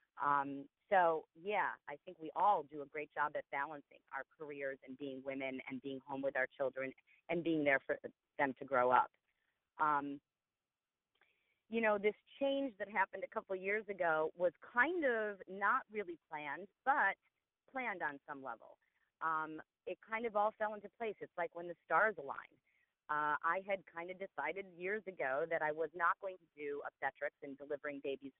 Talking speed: 180 wpm